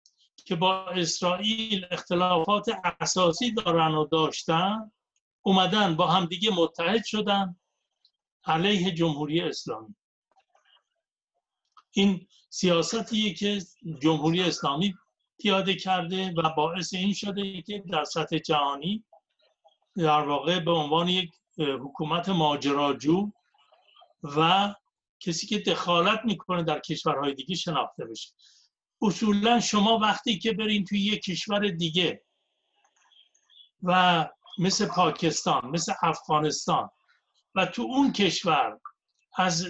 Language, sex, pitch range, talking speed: Persian, male, 165-210 Hz, 100 wpm